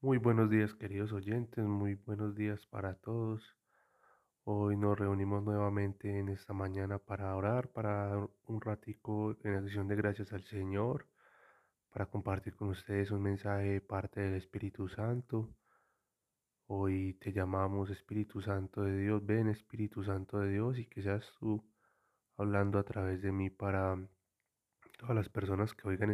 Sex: male